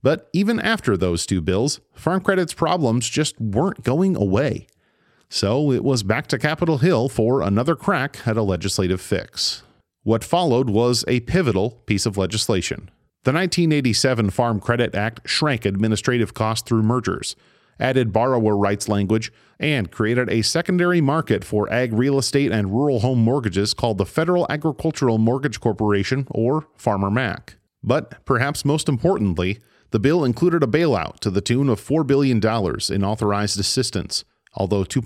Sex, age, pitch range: male, 40-59, 105-140 Hz